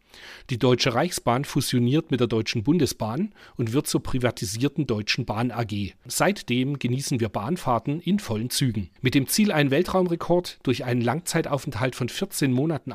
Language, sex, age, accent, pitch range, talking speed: German, male, 40-59, German, 115-170 Hz, 155 wpm